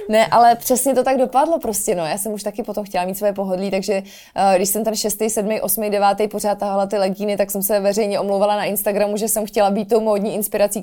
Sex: female